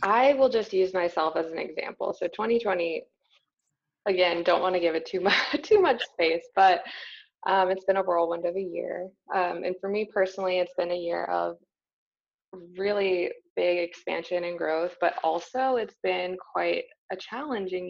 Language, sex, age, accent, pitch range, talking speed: English, female, 20-39, American, 170-205 Hz, 175 wpm